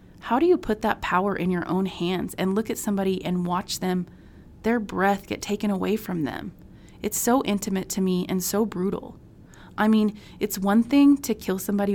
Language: English